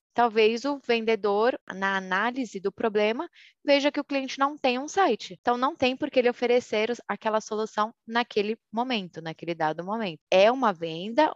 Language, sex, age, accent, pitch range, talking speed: Portuguese, female, 20-39, Brazilian, 180-240 Hz, 165 wpm